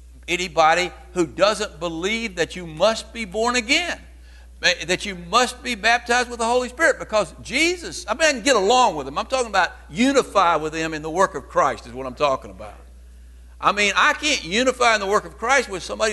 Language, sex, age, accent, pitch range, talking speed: English, male, 60-79, American, 170-270 Hz, 210 wpm